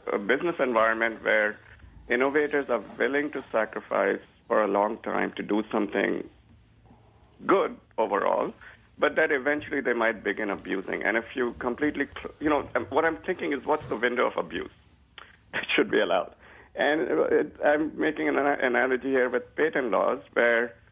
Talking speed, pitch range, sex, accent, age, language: 155 wpm, 110-150 Hz, male, Indian, 50-69, English